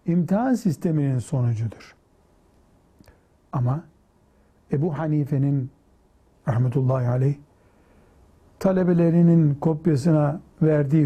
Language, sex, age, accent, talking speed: Turkish, male, 60-79, native, 60 wpm